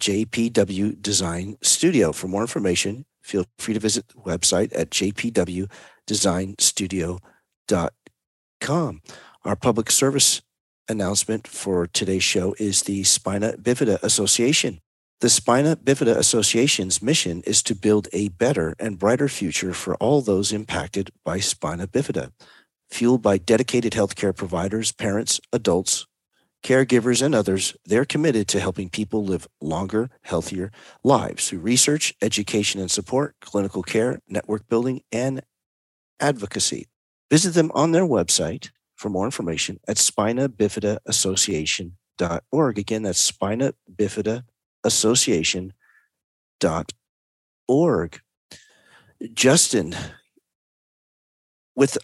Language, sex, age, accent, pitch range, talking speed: English, male, 40-59, American, 95-120 Hz, 110 wpm